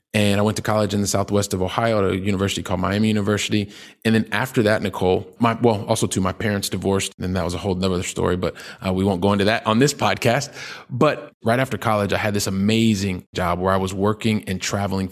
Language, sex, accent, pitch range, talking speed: English, male, American, 95-110 Hz, 240 wpm